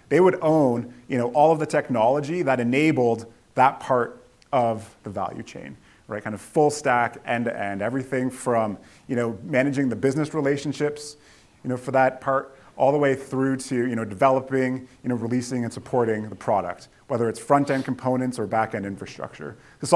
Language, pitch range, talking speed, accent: English, 115-145 Hz, 175 wpm, American